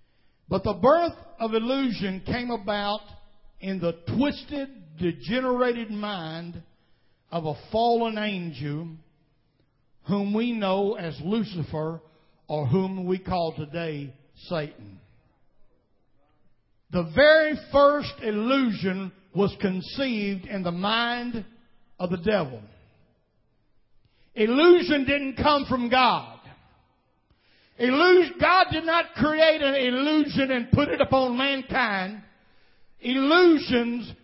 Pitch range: 170-265 Hz